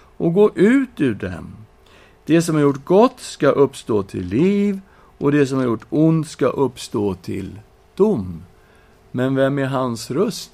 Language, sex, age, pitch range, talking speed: Swedish, male, 60-79, 105-165 Hz, 165 wpm